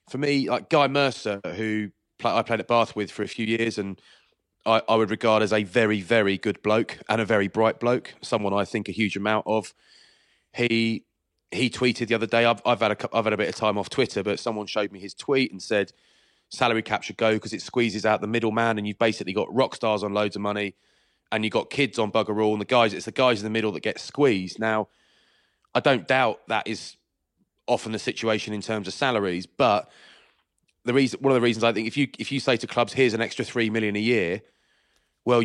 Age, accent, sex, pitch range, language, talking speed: 30-49, British, male, 110-125 Hz, English, 240 wpm